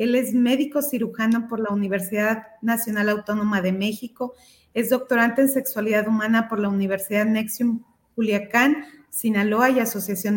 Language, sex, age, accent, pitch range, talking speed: Spanish, female, 30-49, Mexican, 205-245 Hz, 140 wpm